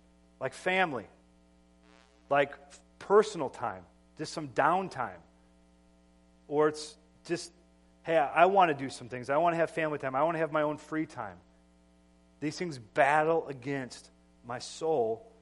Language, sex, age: English, male, 40-59